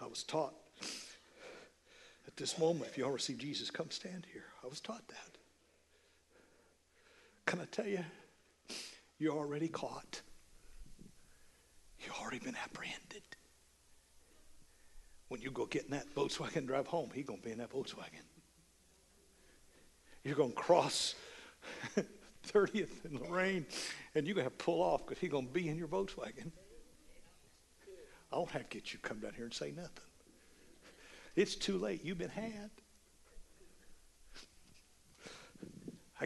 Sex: male